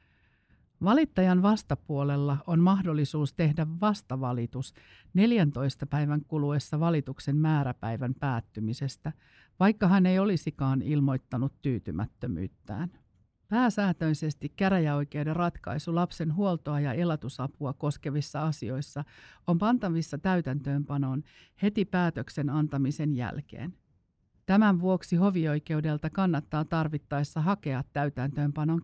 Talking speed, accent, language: 85 wpm, native, Finnish